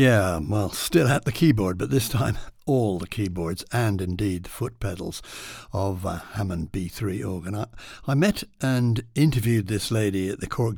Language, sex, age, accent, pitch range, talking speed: English, male, 60-79, British, 95-115 Hz, 180 wpm